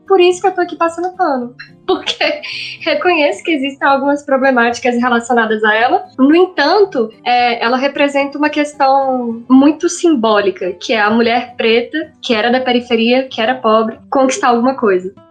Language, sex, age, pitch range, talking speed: Portuguese, female, 10-29, 235-280 Hz, 155 wpm